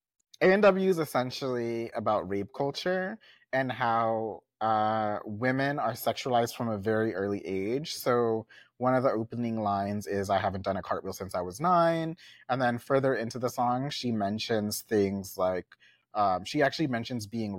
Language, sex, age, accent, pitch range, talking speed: English, male, 30-49, American, 100-125 Hz, 165 wpm